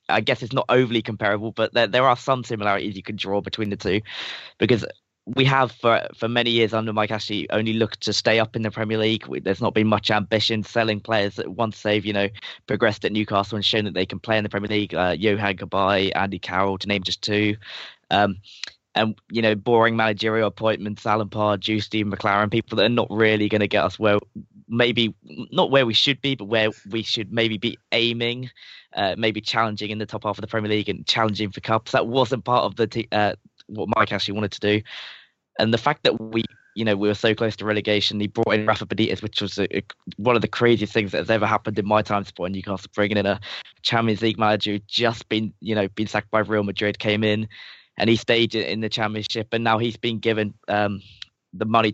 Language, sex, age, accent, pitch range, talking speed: English, male, 20-39, British, 105-115 Hz, 235 wpm